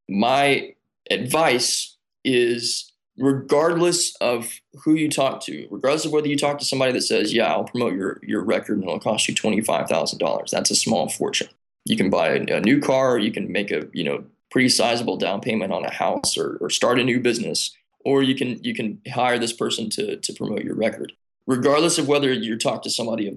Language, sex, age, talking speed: English, male, 20-39, 210 wpm